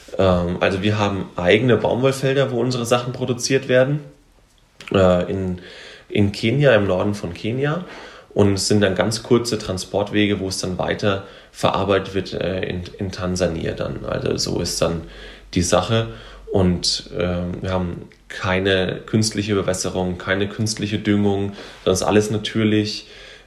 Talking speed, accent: 135 wpm, German